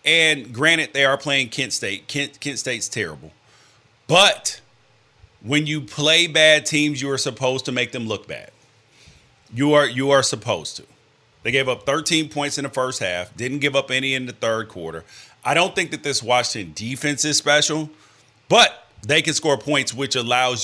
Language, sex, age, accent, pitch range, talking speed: English, male, 30-49, American, 110-140 Hz, 185 wpm